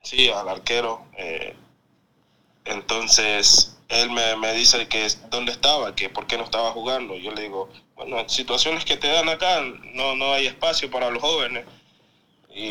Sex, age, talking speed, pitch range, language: male, 20-39, 170 wpm, 110-130 Hz, Spanish